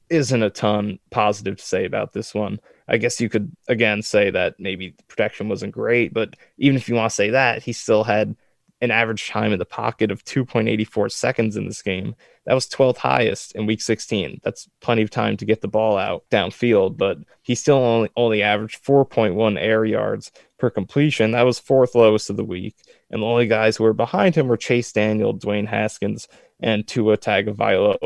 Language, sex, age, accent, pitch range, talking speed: English, male, 20-39, American, 105-125 Hz, 205 wpm